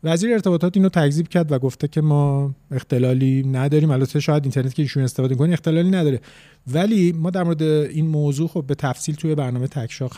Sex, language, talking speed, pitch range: male, Persian, 190 wpm, 130-160 Hz